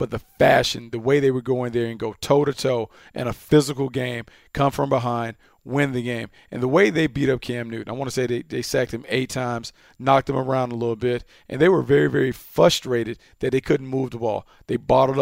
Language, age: English, 40-59